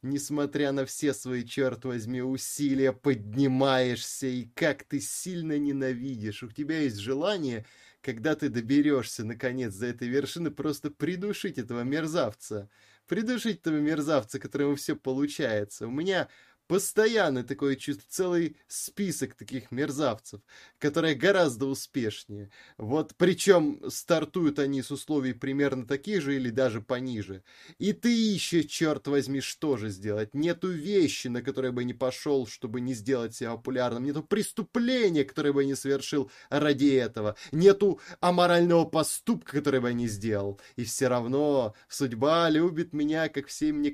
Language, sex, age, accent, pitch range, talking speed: Russian, male, 20-39, native, 125-155 Hz, 145 wpm